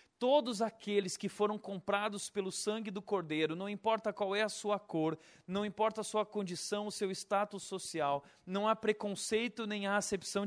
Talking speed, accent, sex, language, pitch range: 180 wpm, Brazilian, male, Portuguese, 150-200 Hz